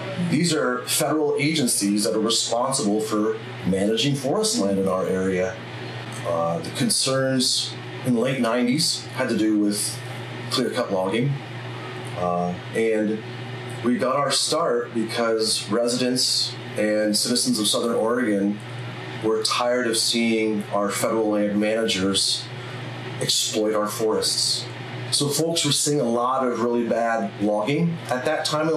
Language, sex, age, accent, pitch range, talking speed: English, male, 30-49, American, 105-130 Hz, 135 wpm